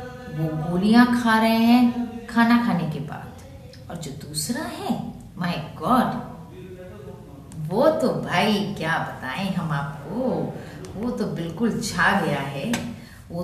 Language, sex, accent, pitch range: Hindi, female, native, 150-225 Hz